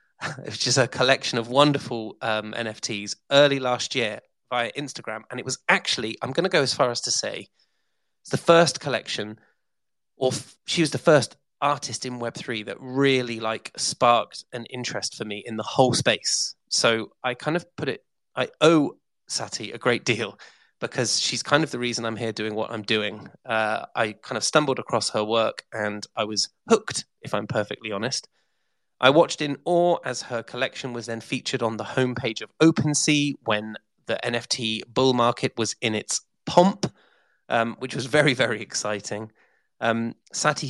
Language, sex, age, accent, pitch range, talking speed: English, male, 20-39, British, 115-145 Hz, 180 wpm